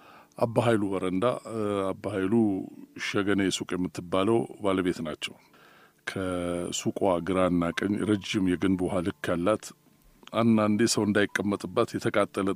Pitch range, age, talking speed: 95-130 Hz, 60-79, 90 wpm